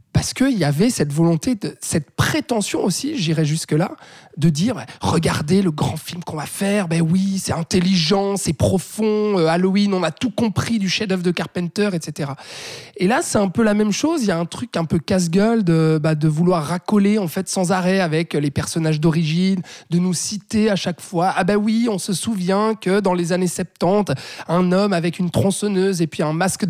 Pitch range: 165-210 Hz